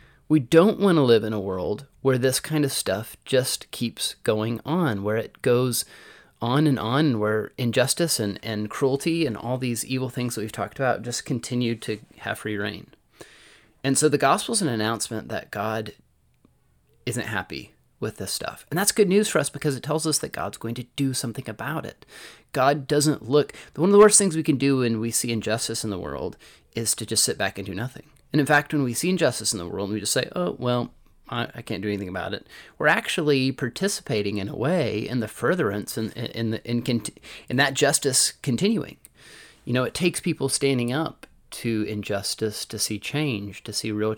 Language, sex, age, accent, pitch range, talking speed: English, male, 30-49, American, 105-140 Hz, 205 wpm